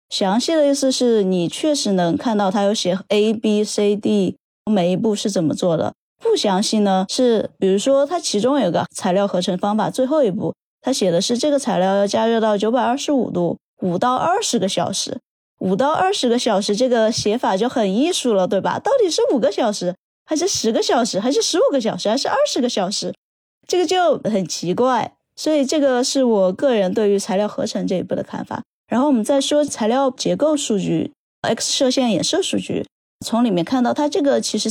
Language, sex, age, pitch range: Chinese, female, 20-39, 195-270 Hz